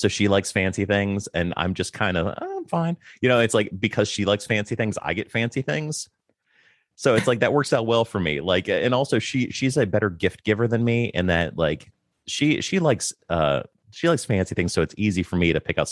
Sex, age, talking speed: male, 30-49, 245 wpm